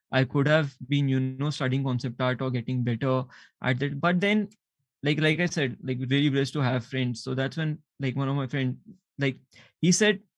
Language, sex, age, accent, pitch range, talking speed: English, male, 20-39, Indian, 130-165 Hz, 215 wpm